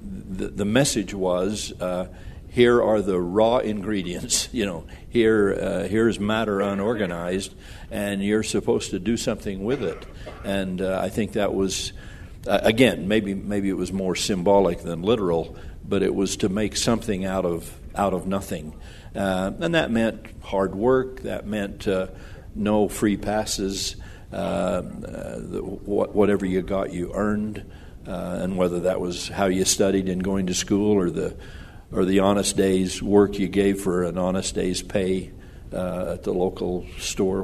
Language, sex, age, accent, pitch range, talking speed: English, male, 60-79, American, 90-100 Hz, 170 wpm